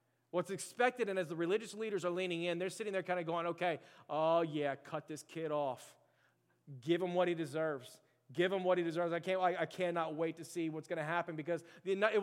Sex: male